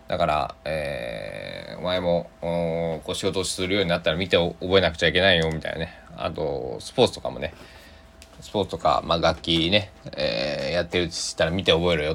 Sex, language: male, Japanese